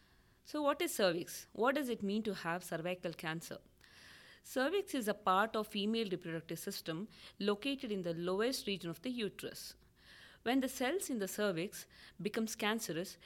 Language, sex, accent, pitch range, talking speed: English, female, Indian, 175-210 Hz, 165 wpm